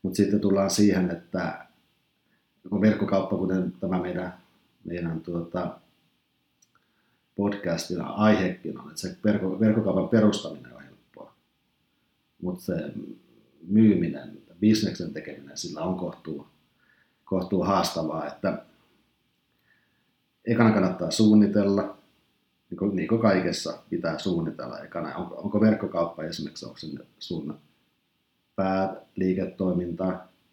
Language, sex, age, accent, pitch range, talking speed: Finnish, male, 50-69, native, 90-105 Hz, 100 wpm